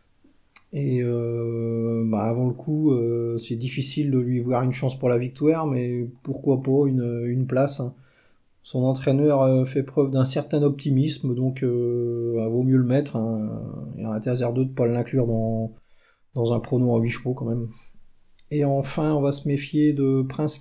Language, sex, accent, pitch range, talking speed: French, male, French, 125-145 Hz, 190 wpm